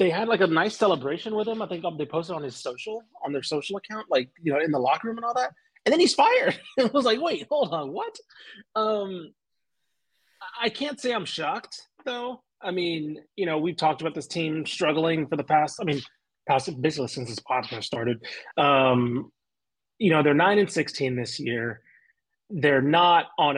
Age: 30-49